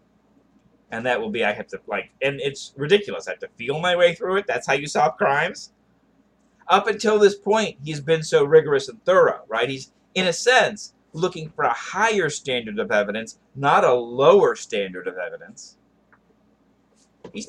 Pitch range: 140-220 Hz